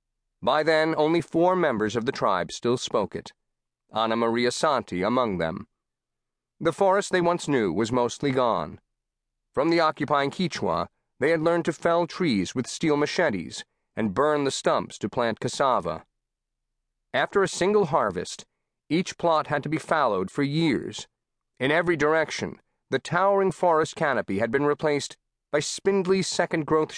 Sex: male